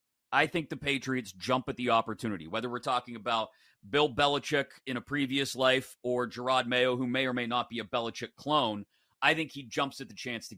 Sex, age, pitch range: male, 30-49, 110-140 Hz